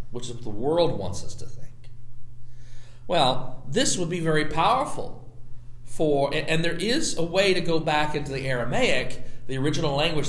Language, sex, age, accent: English, male, 40-59, American